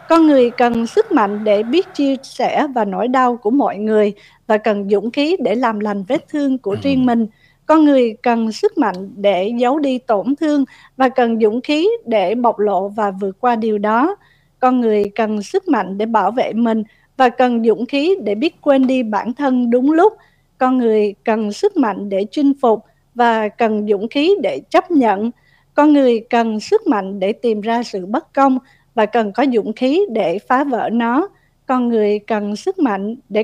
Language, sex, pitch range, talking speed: Vietnamese, female, 210-275 Hz, 200 wpm